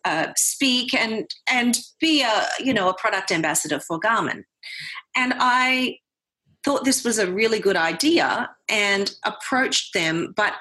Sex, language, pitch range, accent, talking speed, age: female, English, 195-290 Hz, Australian, 145 wpm, 30-49